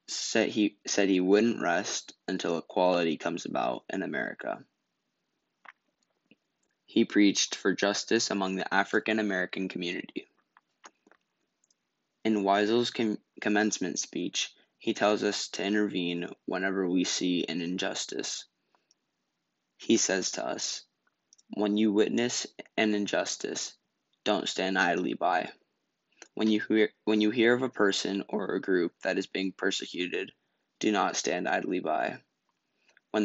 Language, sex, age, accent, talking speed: English, male, 10-29, American, 125 wpm